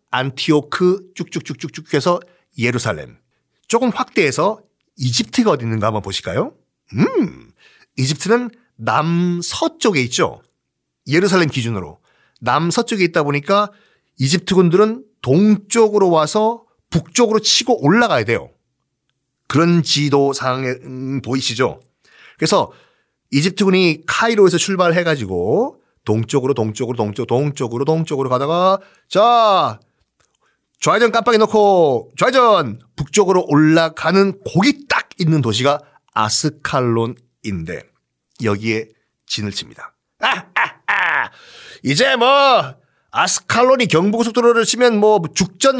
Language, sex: Korean, male